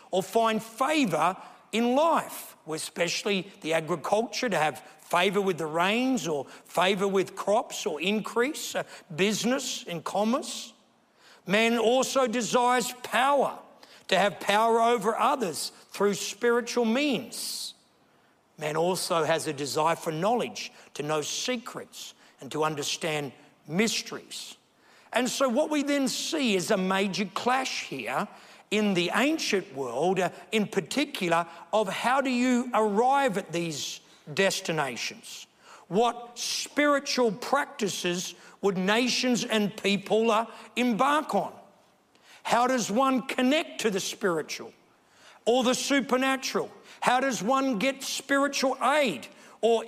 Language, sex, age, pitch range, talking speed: English, male, 60-79, 185-260 Hz, 125 wpm